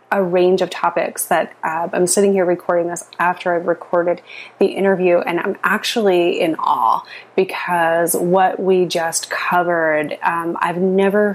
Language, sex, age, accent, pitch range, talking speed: English, female, 30-49, American, 170-195 Hz, 155 wpm